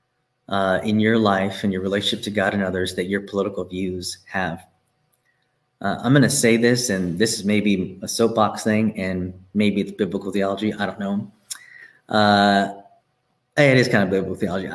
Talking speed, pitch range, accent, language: 180 wpm, 100-120 Hz, American, English